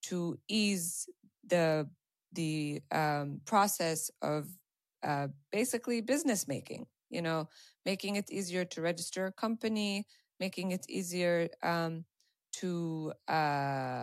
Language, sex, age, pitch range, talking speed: English, female, 20-39, 165-200 Hz, 115 wpm